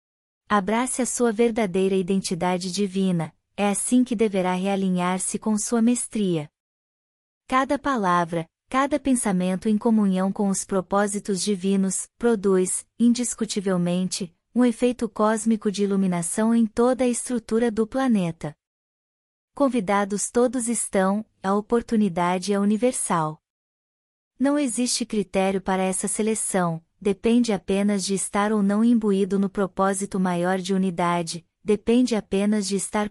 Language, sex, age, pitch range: Portuguese, female, 20-39, 190-230 Hz